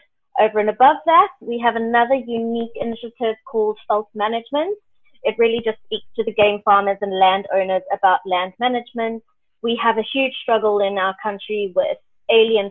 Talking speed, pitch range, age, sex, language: 165 wpm, 200-240 Hz, 30-49, female, English